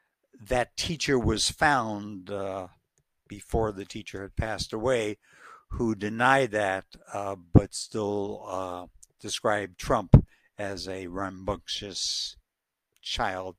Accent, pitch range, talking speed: American, 95-115 Hz, 105 wpm